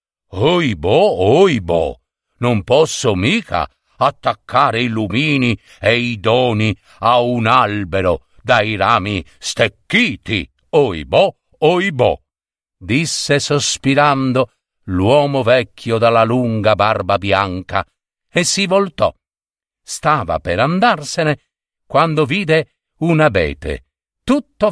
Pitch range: 105-145 Hz